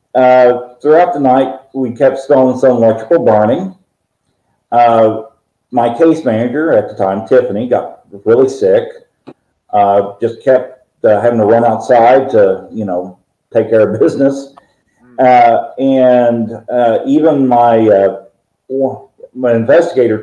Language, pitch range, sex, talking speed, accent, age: English, 110-140 Hz, male, 130 wpm, American, 50-69